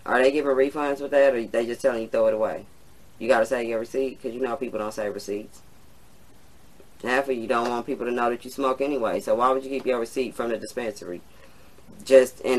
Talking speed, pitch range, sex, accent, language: 245 wpm, 115-140 Hz, female, American, English